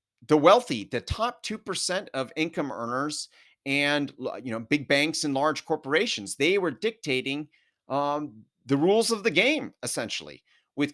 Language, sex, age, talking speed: English, male, 30-49, 150 wpm